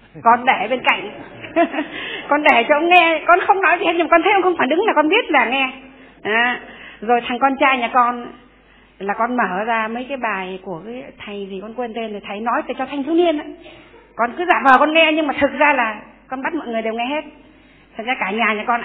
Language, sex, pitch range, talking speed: Vietnamese, female, 220-275 Hz, 255 wpm